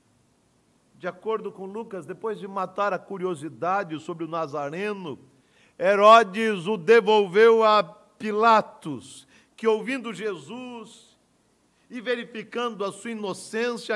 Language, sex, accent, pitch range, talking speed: Portuguese, male, Brazilian, 195-255 Hz, 105 wpm